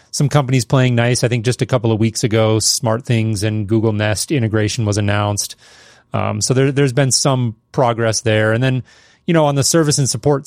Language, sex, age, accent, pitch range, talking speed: English, male, 30-49, American, 110-135 Hz, 205 wpm